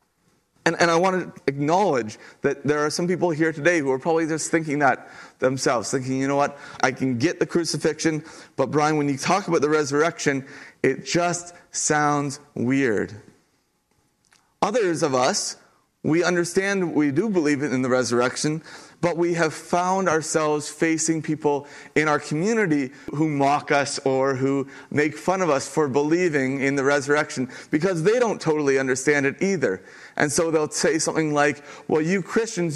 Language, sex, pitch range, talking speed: English, male, 140-170 Hz, 170 wpm